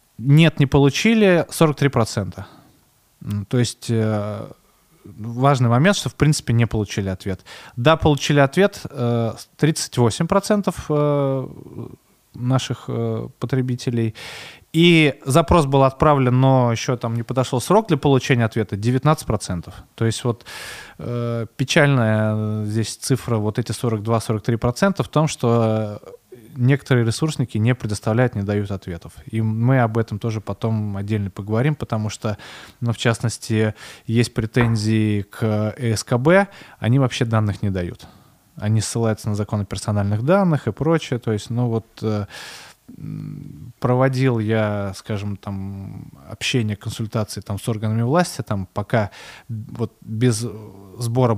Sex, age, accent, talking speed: male, 20-39, native, 120 wpm